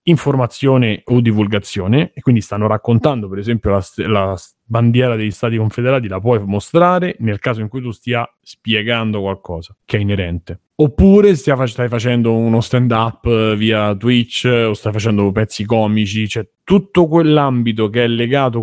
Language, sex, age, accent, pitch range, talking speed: Italian, male, 30-49, native, 110-135 Hz, 155 wpm